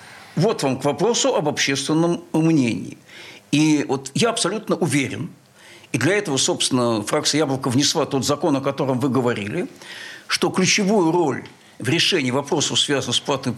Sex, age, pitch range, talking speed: male, 60-79, 145-190 Hz, 150 wpm